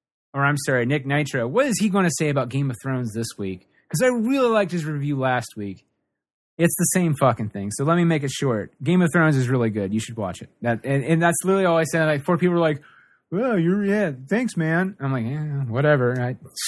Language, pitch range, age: English, 125-160 Hz, 30-49